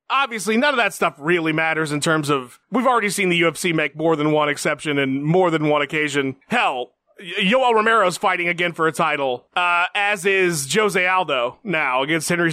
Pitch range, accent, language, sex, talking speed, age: 160-220 Hz, American, English, male, 200 wpm, 30-49